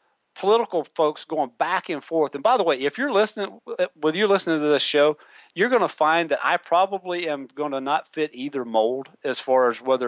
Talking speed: 215 wpm